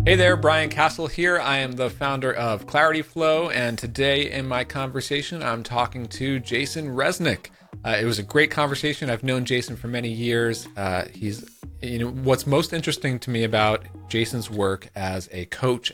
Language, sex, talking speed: English, male, 185 wpm